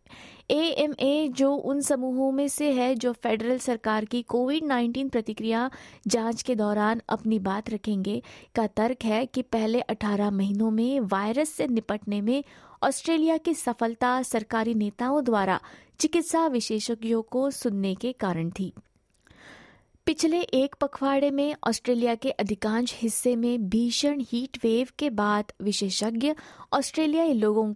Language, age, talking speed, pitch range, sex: Hindi, 20-39, 135 wpm, 220-280 Hz, female